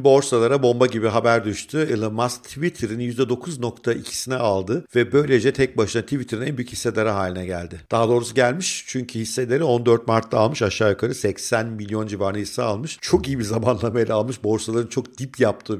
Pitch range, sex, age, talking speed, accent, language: 105-130 Hz, male, 50-69, 165 wpm, native, Turkish